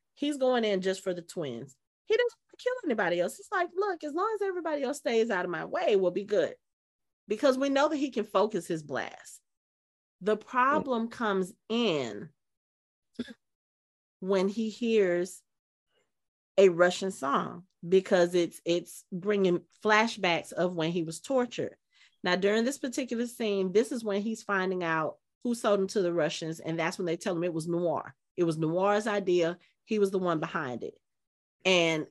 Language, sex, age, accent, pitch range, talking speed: English, female, 30-49, American, 165-225 Hz, 180 wpm